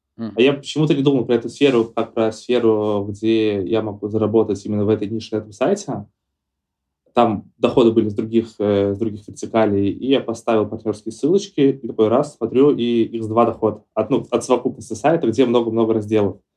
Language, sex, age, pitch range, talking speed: Russian, male, 20-39, 110-125 Hz, 185 wpm